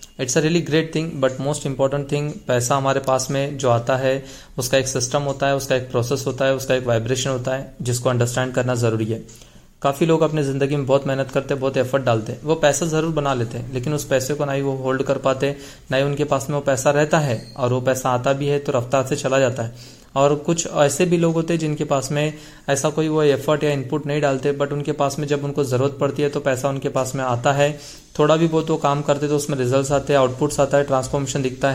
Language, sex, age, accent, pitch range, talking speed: Hindi, male, 20-39, native, 135-150 Hz, 255 wpm